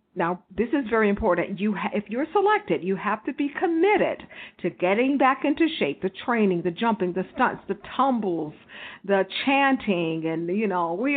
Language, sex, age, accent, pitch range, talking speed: English, female, 50-69, American, 180-240 Hz, 185 wpm